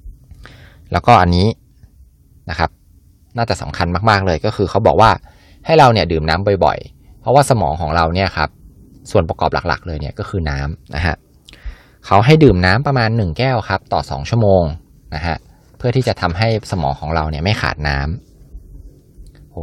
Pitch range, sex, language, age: 80-110 Hz, male, Thai, 20-39